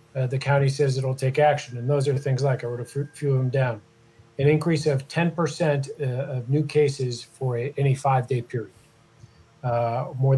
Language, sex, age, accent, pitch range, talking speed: English, male, 40-59, American, 120-145 Hz, 195 wpm